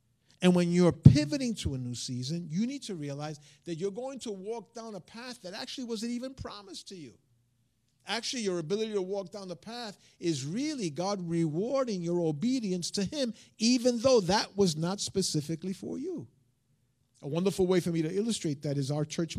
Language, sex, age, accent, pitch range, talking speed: English, male, 50-69, American, 150-210 Hz, 190 wpm